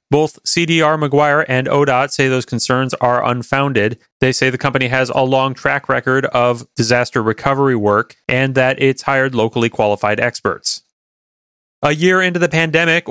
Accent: American